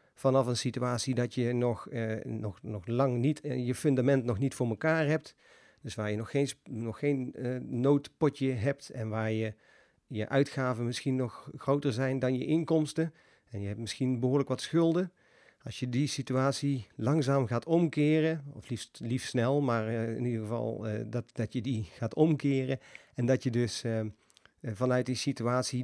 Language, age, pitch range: Dutch, 40-59, 115-140 Hz